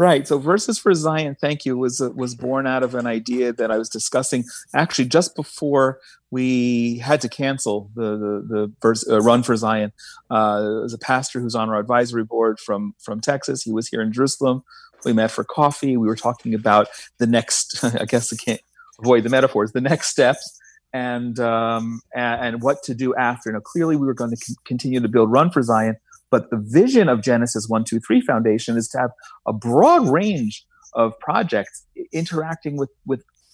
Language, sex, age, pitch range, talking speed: English, male, 30-49, 115-150 Hz, 200 wpm